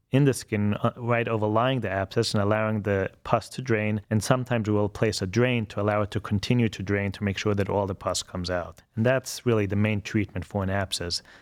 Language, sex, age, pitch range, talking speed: English, male, 30-49, 100-120 Hz, 235 wpm